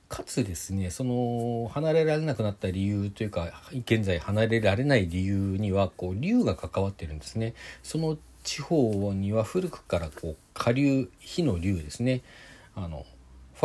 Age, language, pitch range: 40-59, Japanese, 90-125 Hz